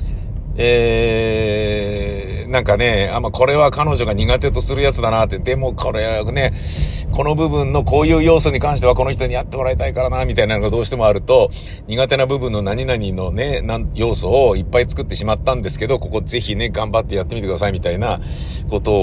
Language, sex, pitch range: Japanese, male, 85-125 Hz